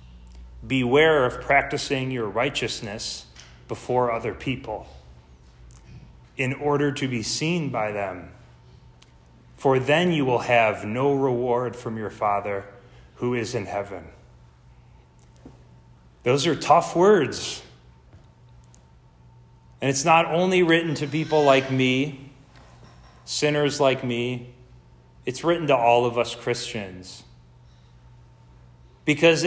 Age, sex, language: 30-49, male, English